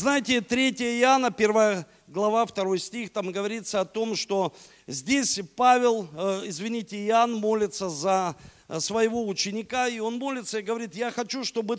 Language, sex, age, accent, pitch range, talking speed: Russian, male, 50-69, native, 195-250 Hz, 145 wpm